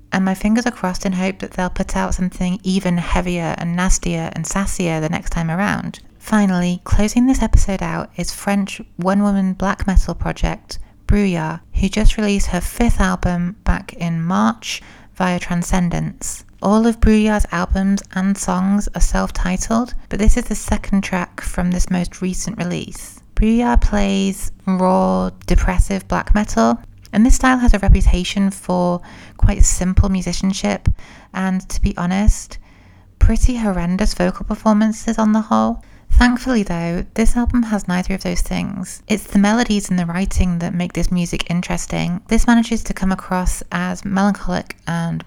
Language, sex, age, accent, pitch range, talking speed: English, female, 30-49, British, 175-205 Hz, 160 wpm